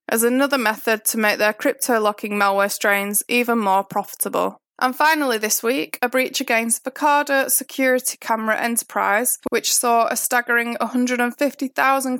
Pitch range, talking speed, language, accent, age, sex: 215-260 Hz, 140 wpm, English, British, 20-39, female